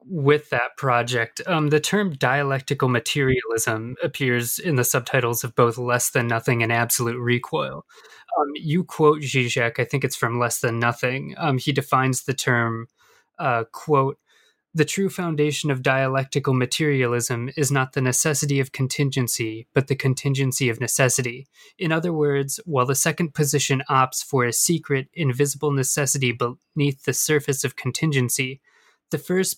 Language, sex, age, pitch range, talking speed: English, male, 20-39, 120-150 Hz, 150 wpm